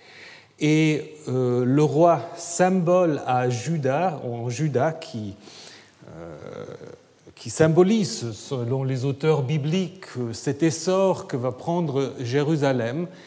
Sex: male